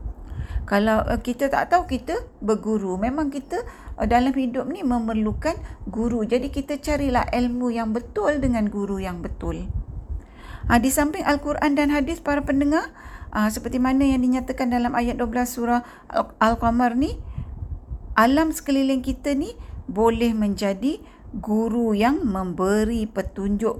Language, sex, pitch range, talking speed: Malay, female, 195-255 Hz, 125 wpm